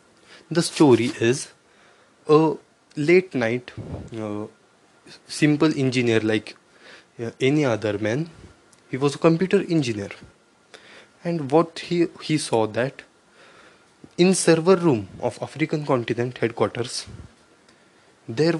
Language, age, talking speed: English, 20-39, 105 wpm